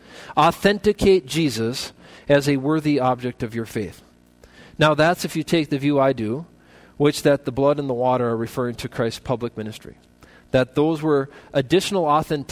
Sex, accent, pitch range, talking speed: male, American, 120-165 Hz, 170 wpm